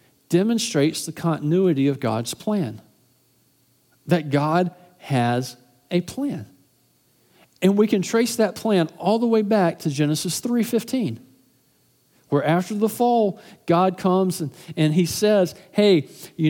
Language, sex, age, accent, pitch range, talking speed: English, male, 50-69, American, 150-205 Hz, 130 wpm